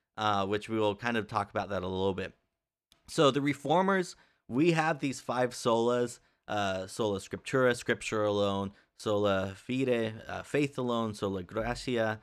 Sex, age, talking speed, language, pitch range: male, 30-49, 155 wpm, English, 95-120 Hz